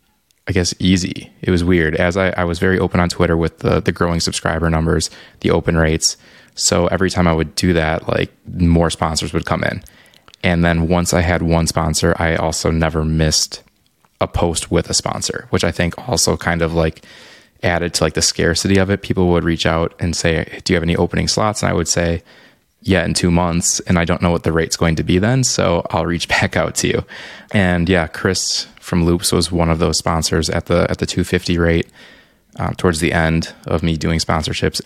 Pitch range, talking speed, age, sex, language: 80-90 Hz, 220 wpm, 20-39, male, English